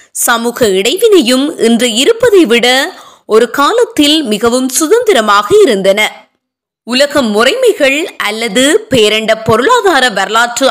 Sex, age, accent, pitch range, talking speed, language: female, 20-39, native, 230-350 Hz, 75 wpm, Tamil